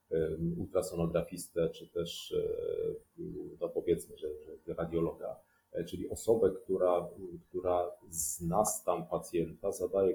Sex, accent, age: male, native, 40-59